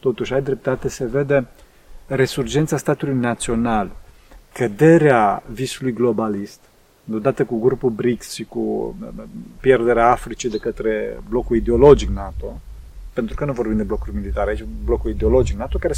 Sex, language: male, Romanian